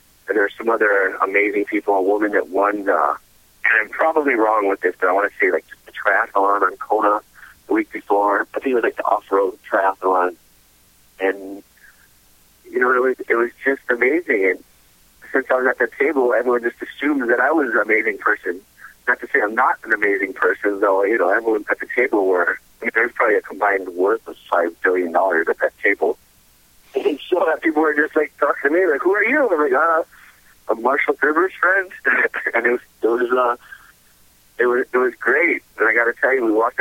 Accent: American